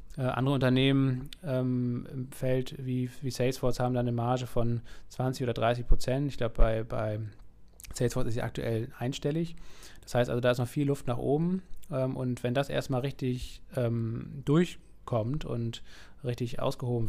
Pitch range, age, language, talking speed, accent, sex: 115-130 Hz, 20-39, German, 170 wpm, German, male